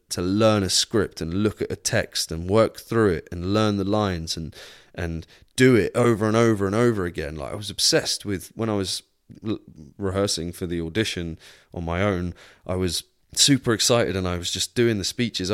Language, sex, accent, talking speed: English, male, British, 205 wpm